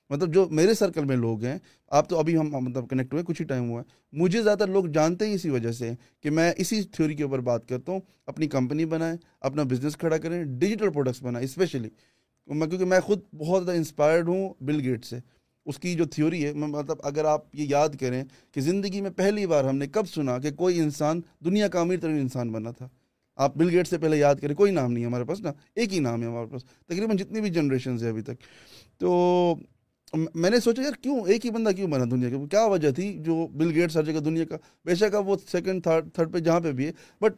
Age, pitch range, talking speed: 20-39, 140-190 Hz, 230 wpm